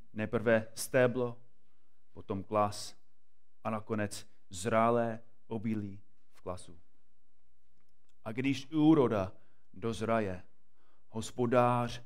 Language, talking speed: Czech, 75 wpm